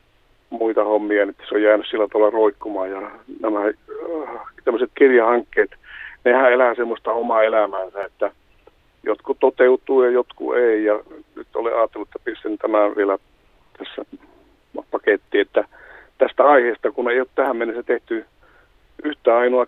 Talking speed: 135 wpm